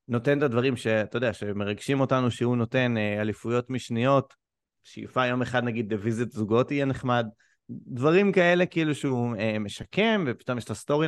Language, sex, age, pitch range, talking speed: English, male, 30-49, 115-155 Hz, 145 wpm